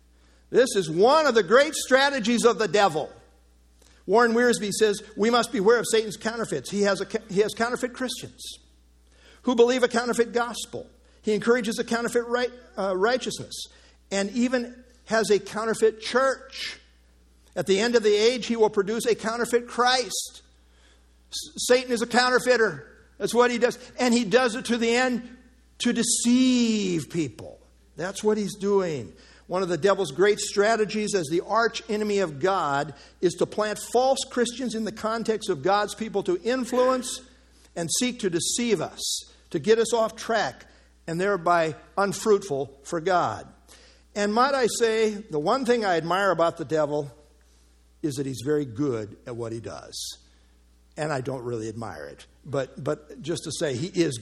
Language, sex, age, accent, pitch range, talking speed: English, male, 50-69, American, 150-235 Hz, 165 wpm